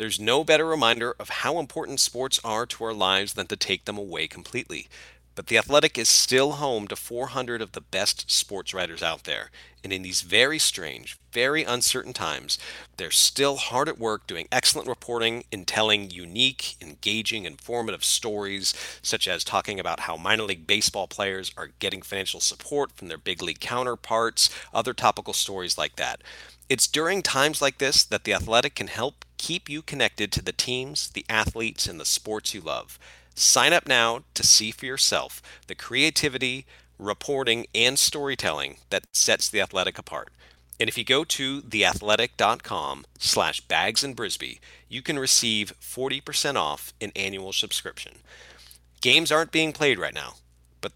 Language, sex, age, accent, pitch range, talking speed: English, male, 40-59, American, 95-130 Hz, 165 wpm